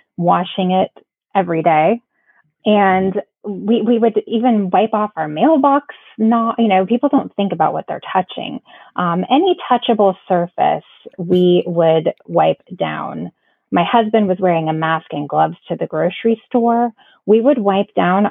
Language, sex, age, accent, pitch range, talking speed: English, female, 20-39, American, 175-230 Hz, 155 wpm